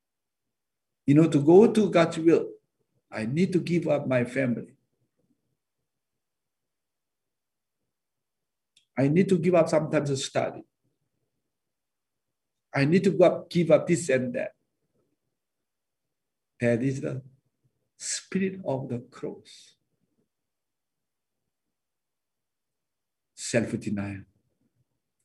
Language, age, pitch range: English, 60-79, 125-190 Hz